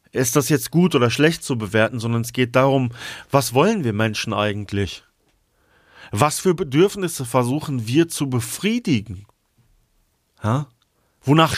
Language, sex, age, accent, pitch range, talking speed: German, male, 40-59, German, 110-140 Hz, 130 wpm